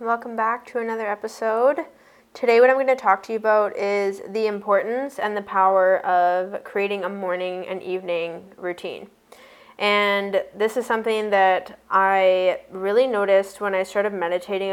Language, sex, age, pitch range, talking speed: English, female, 10-29, 185-215 Hz, 160 wpm